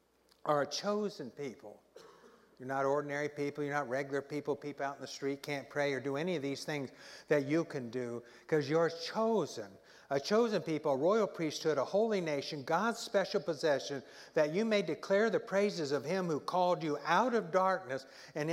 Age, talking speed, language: 60-79, 190 wpm, English